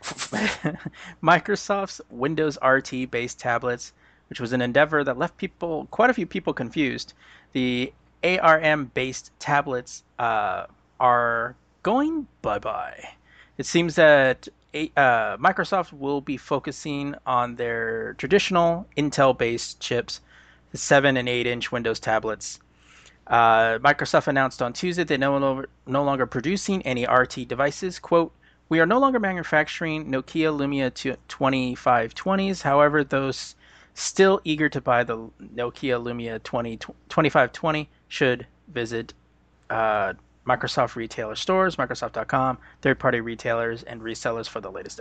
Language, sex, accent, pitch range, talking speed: English, male, American, 120-155 Hz, 120 wpm